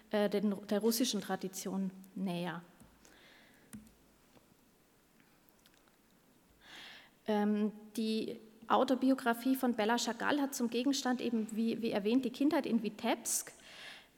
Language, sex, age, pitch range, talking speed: German, female, 30-49, 215-245 Hz, 80 wpm